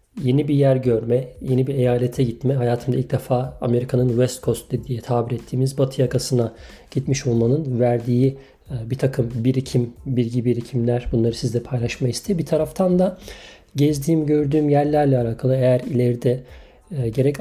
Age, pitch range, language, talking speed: 40-59, 120-140 Hz, Turkish, 140 wpm